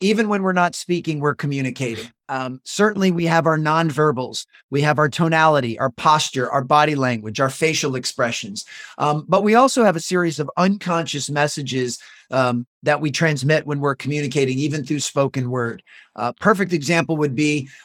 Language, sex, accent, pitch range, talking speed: English, male, American, 135-170 Hz, 170 wpm